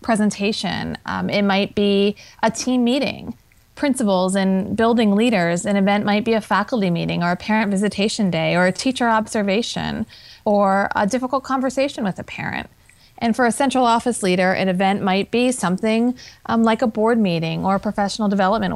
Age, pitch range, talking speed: 30-49, 185-230 Hz, 175 wpm